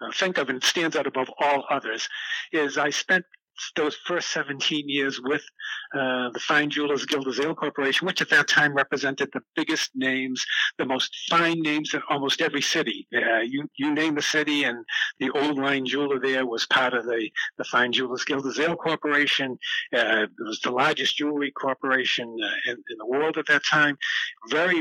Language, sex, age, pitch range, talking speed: English, male, 60-79, 135-165 Hz, 185 wpm